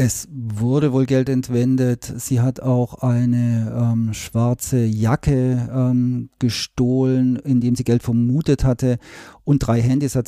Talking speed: 135 wpm